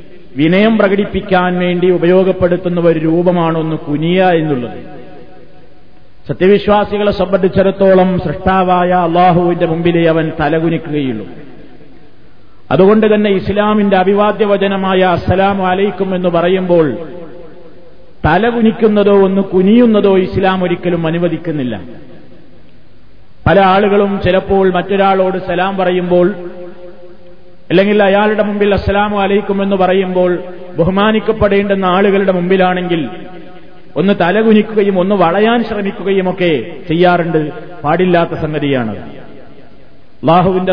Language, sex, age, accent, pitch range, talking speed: Malayalam, male, 50-69, native, 175-200 Hz, 80 wpm